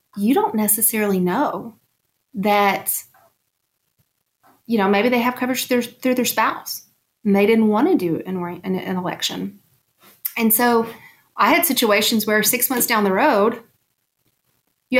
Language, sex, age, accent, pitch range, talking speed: English, female, 30-49, American, 200-255 Hz, 150 wpm